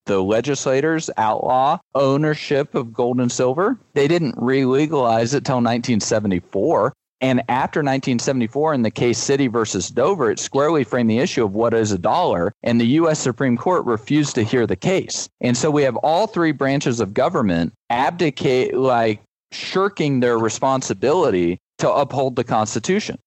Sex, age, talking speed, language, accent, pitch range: male, 40-59, 155 wpm, English, American, 120-155 Hz